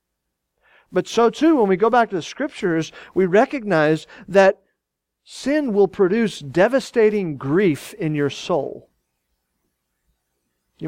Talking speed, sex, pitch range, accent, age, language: 120 wpm, male, 135-200 Hz, American, 40-59, English